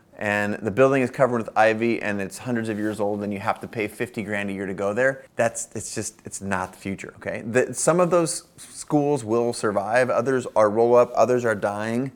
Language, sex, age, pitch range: English, male, 30-49, 105-130 Hz